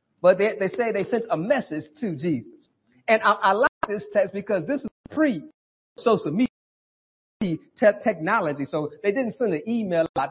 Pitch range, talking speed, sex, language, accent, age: 155-230 Hz, 180 wpm, male, English, American, 40-59